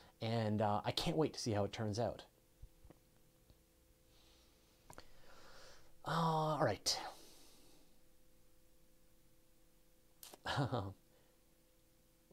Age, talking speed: 30-49, 75 wpm